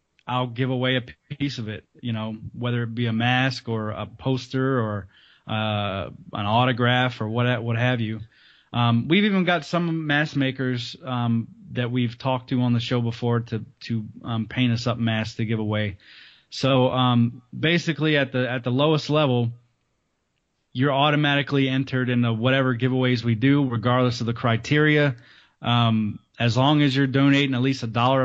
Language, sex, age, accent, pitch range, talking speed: English, male, 20-39, American, 115-135 Hz, 175 wpm